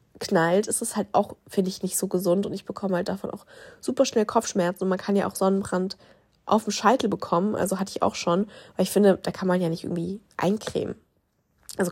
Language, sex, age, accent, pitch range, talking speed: German, female, 20-39, German, 180-205 Hz, 225 wpm